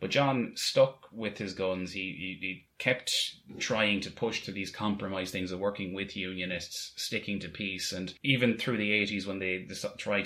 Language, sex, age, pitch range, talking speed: English, male, 20-39, 90-100 Hz, 195 wpm